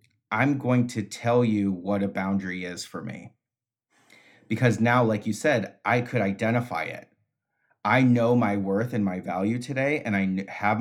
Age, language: 30-49, English